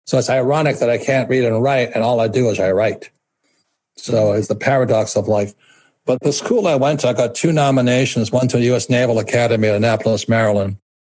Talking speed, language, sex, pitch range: 225 wpm, English, male, 110-130 Hz